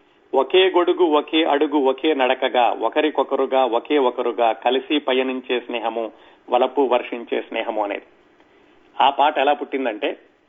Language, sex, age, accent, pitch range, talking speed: Telugu, male, 40-59, native, 130-180 Hz, 115 wpm